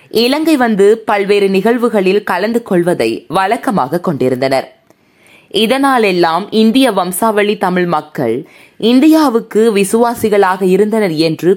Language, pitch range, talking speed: Tamil, 185-240 Hz, 85 wpm